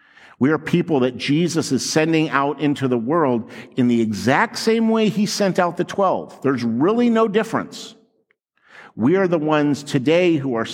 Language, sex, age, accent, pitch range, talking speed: English, male, 50-69, American, 150-205 Hz, 180 wpm